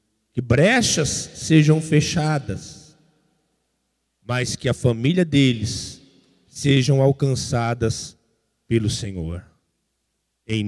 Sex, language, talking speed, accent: male, Portuguese, 80 wpm, Brazilian